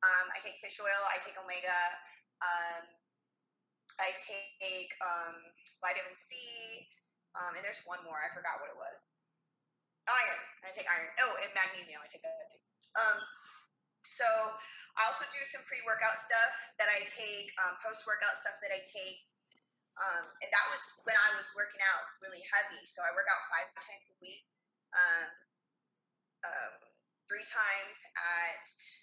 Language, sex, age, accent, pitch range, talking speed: English, female, 20-39, American, 175-220 Hz, 155 wpm